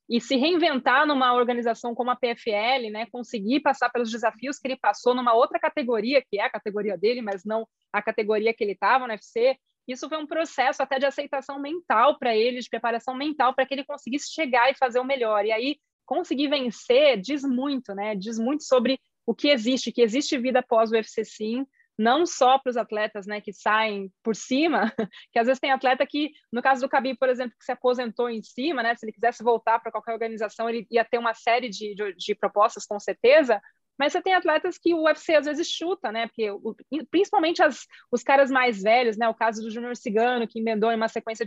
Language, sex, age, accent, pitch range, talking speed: Portuguese, female, 20-39, Brazilian, 225-275 Hz, 220 wpm